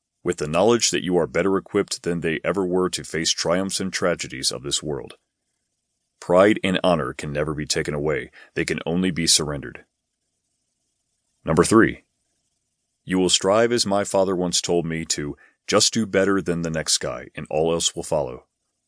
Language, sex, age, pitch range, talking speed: English, male, 30-49, 80-100 Hz, 180 wpm